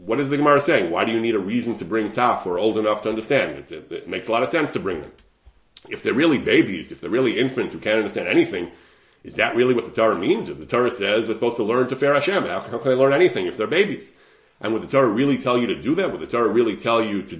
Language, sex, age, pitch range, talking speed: English, male, 30-49, 110-140 Hz, 300 wpm